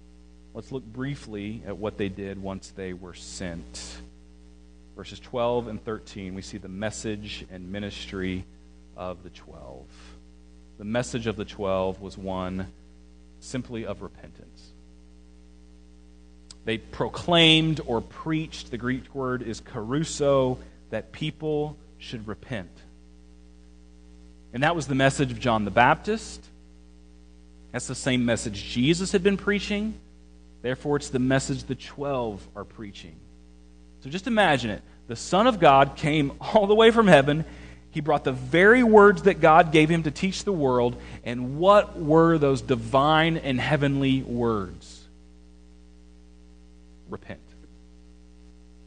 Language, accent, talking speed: English, American, 135 wpm